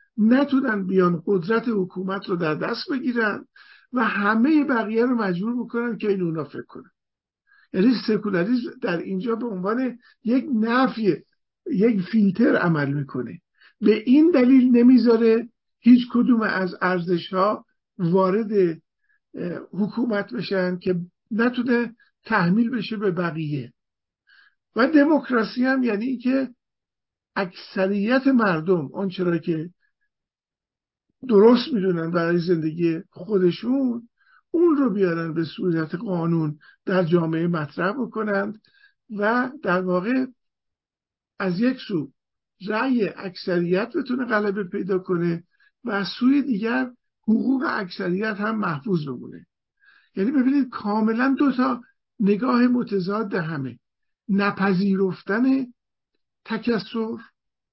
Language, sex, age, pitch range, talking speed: Persian, male, 50-69, 185-250 Hz, 105 wpm